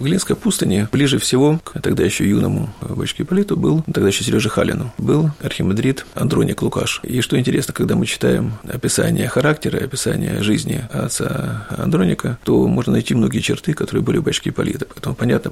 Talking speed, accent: 170 wpm, native